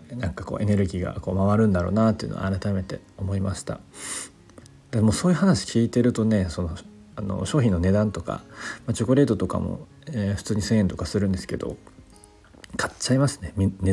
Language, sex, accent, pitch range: Japanese, male, native, 90-110 Hz